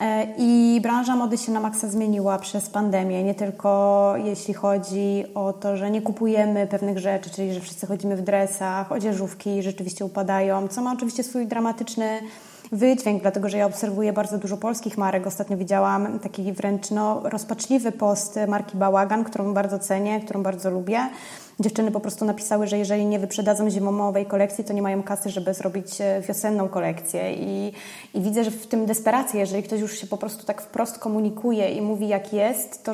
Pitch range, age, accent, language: 200-220 Hz, 20-39, native, Polish